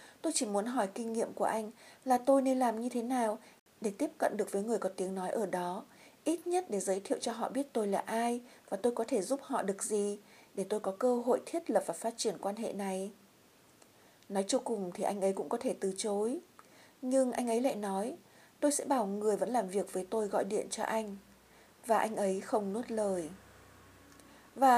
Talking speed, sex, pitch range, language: 230 wpm, female, 195-255 Hz, Vietnamese